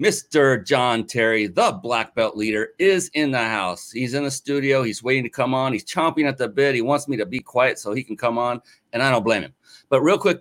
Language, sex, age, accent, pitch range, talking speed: English, male, 40-59, American, 105-140 Hz, 255 wpm